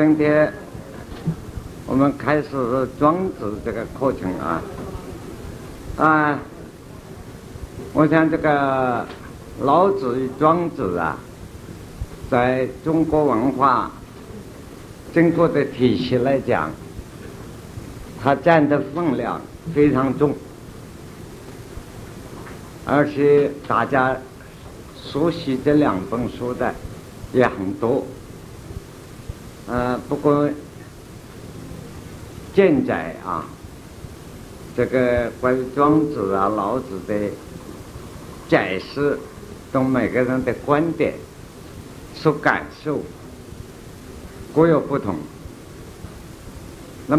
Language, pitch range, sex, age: Chinese, 120-150 Hz, male, 60-79